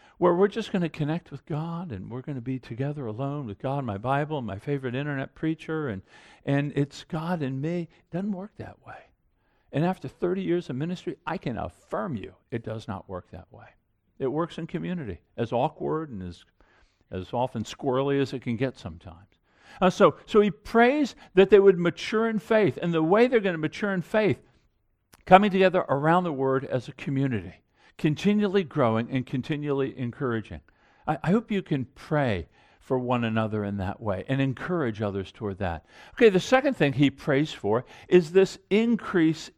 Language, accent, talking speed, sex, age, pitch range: English, American, 195 wpm, male, 50-69, 125-185 Hz